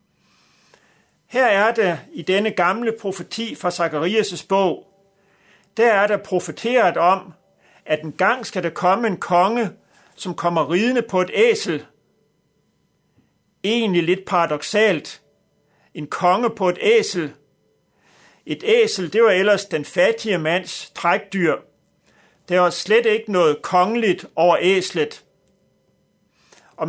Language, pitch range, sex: Danish, 175-215 Hz, male